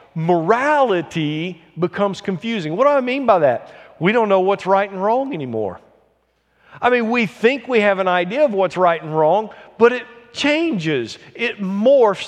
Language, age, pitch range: English, 50-69, 170-235 Hz